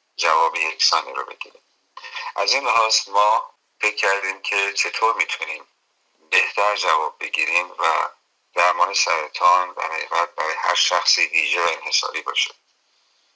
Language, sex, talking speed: Persian, male, 120 wpm